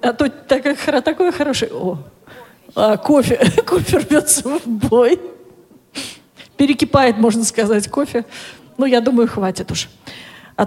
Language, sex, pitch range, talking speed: Russian, female, 200-250 Hz, 125 wpm